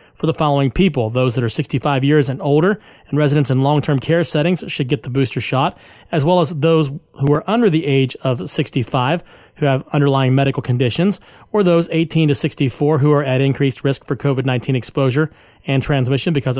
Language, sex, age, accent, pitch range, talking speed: English, male, 30-49, American, 135-160 Hz, 195 wpm